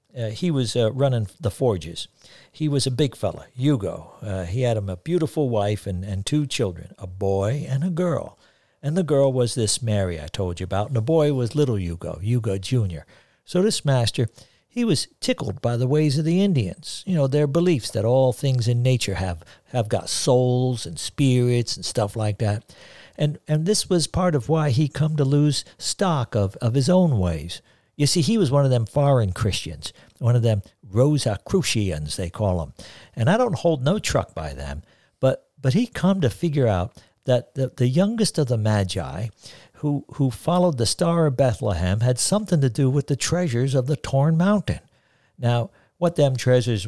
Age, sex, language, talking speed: 60-79, male, English, 200 wpm